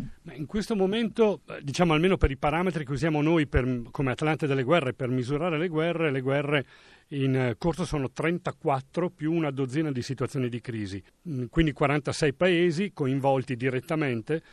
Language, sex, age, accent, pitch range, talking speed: Italian, male, 40-59, native, 130-170 Hz, 155 wpm